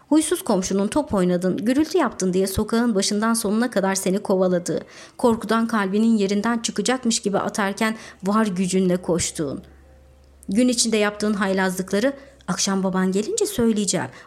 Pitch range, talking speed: 185-225 Hz, 125 wpm